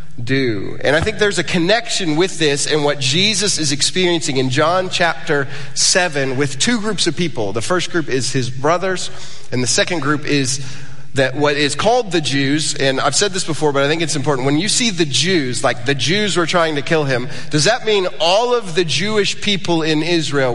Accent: American